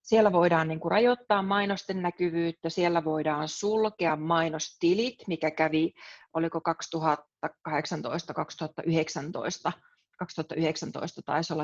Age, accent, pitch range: 30-49, native, 160-205 Hz